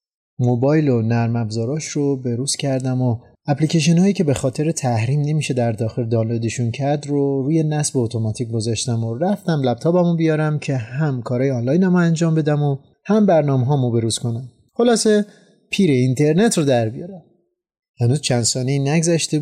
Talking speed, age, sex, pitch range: 150 wpm, 30-49, male, 120-155 Hz